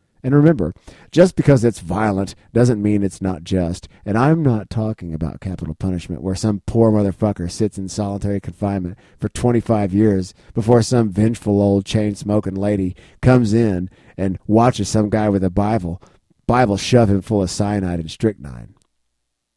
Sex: male